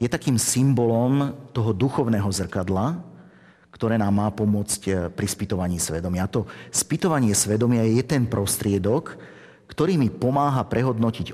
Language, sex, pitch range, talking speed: Slovak, male, 95-120 Hz, 125 wpm